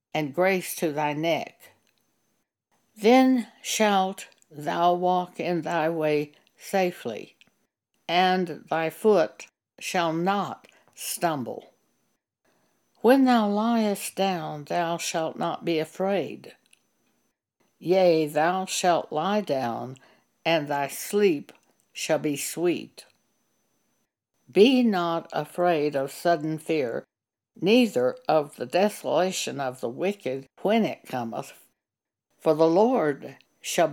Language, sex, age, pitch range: English, female, 60-79, 155-195 Hz